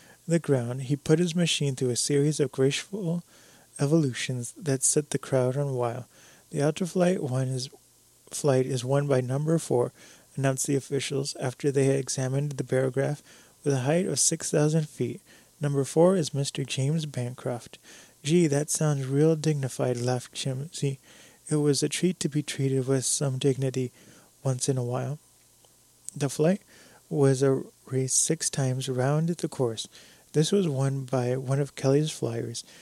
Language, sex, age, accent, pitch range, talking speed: English, male, 30-49, American, 130-155 Hz, 170 wpm